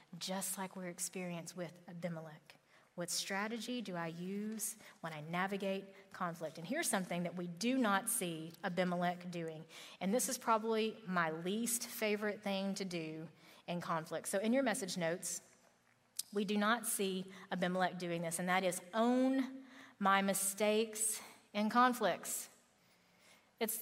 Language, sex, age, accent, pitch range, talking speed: English, female, 30-49, American, 180-230 Hz, 145 wpm